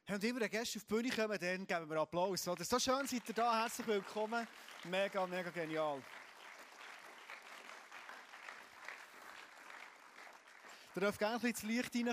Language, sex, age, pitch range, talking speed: German, male, 30-49, 135-190 Hz, 145 wpm